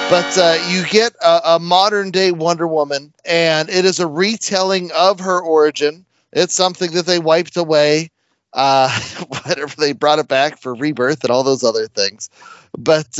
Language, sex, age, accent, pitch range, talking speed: English, male, 30-49, American, 140-180 Hz, 170 wpm